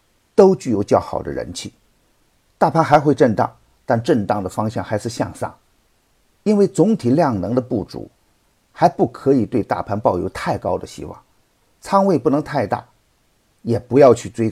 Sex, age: male, 50-69